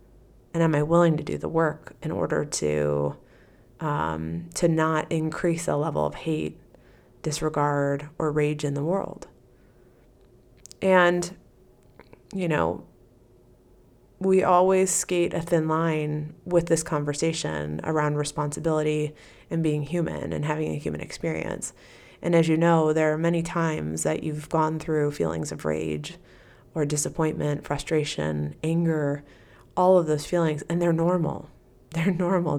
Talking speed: 140 wpm